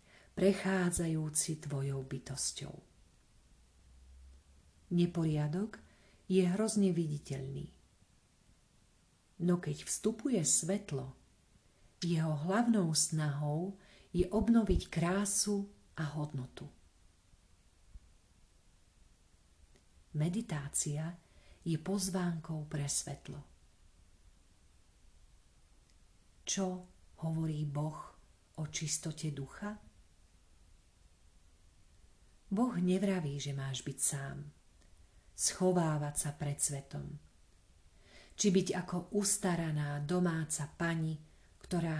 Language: Slovak